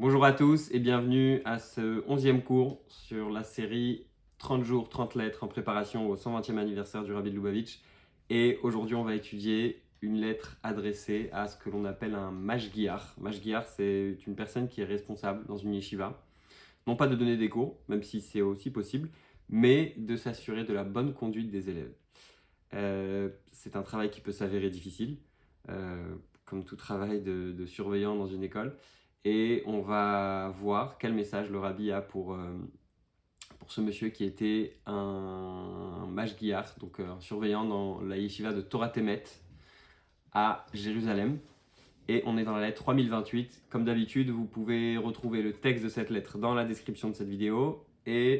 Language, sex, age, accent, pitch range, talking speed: French, male, 20-39, French, 100-115 Hz, 175 wpm